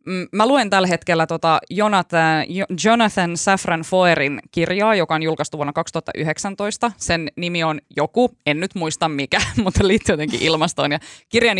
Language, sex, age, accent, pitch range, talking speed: Finnish, female, 20-39, native, 155-190 Hz, 145 wpm